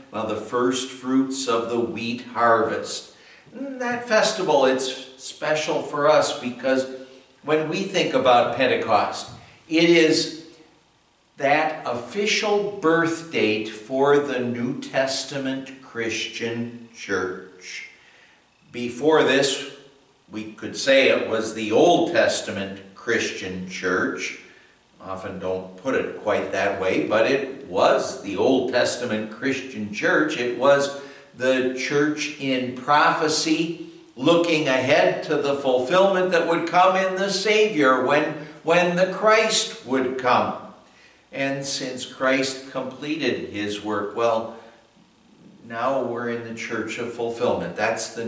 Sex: male